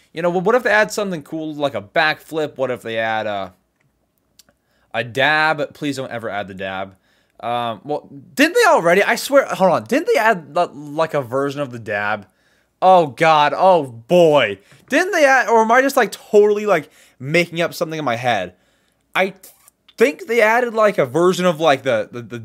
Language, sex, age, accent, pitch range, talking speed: English, male, 20-39, American, 120-180 Hz, 200 wpm